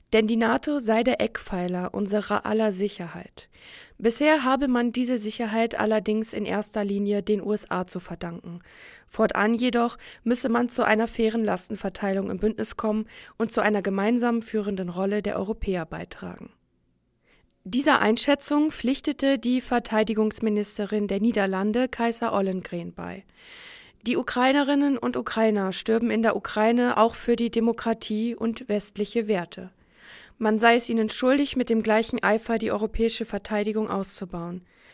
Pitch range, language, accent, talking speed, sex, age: 205-235 Hz, German, German, 135 wpm, female, 20-39